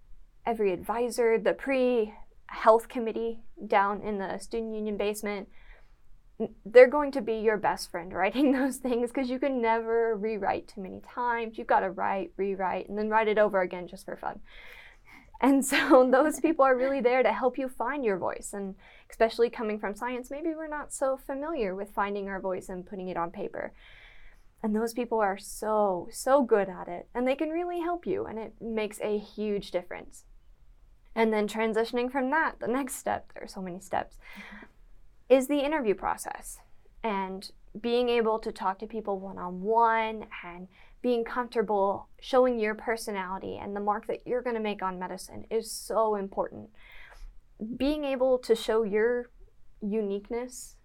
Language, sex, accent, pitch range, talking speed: English, female, American, 205-250 Hz, 170 wpm